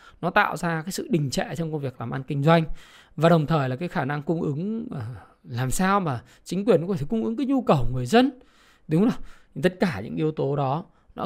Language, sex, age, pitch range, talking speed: Vietnamese, male, 20-39, 155-220 Hz, 255 wpm